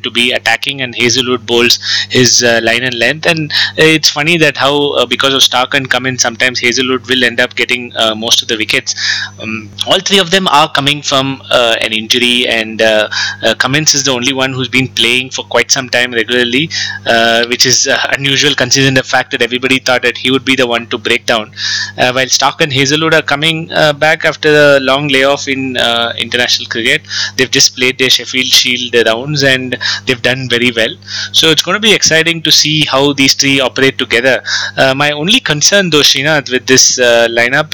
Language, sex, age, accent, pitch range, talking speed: English, male, 20-39, Indian, 120-140 Hz, 210 wpm